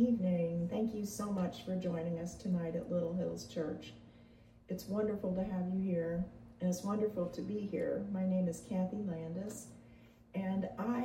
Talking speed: 175 wpm